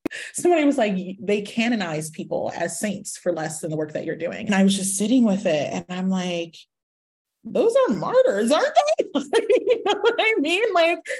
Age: 30-49